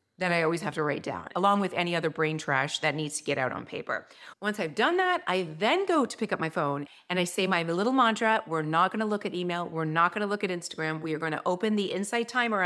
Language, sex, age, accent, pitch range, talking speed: English, female, 40-59, American, 170-235 Hz, 270 wpm